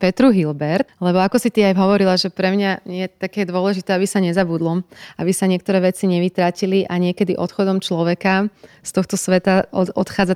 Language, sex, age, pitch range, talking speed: Slovak, female, 30-49, 175-195 Hz, 175 wpm